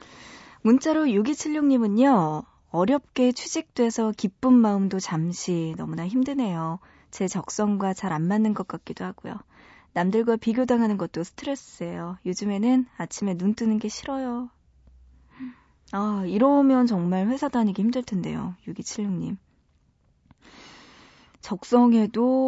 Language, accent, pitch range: Korean, native, 185-245 Hz